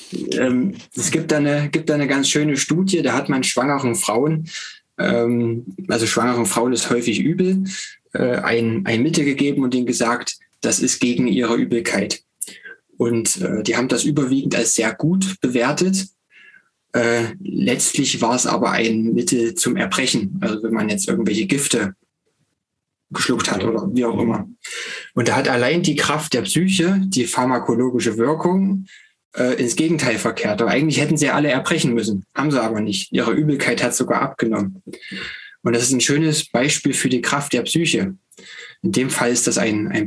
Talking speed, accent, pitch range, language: 165 wpm, German, 115-155 Hz, German